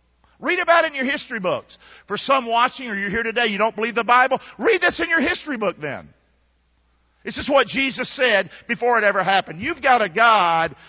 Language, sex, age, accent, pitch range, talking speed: English, male, 50-69, American, 185-265 Hz, 215 wpm